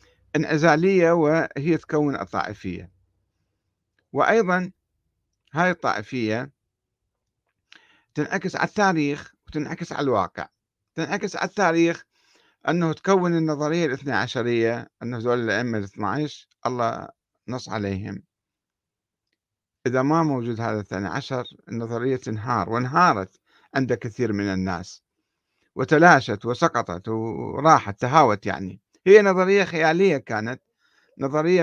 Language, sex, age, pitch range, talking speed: Arabic, male, 50-69, 105-160 Hz, 100 wpm